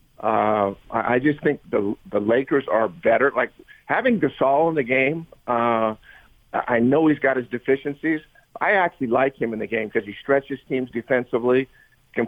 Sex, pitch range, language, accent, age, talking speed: male, 115-140 Hz, English, American, 50-69, 170 wpm